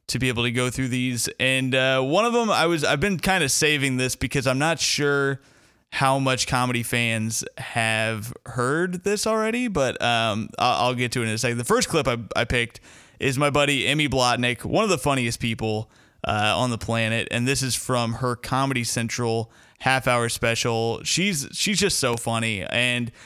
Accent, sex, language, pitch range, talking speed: American, male, English, 115-140 Hz, 195 wpm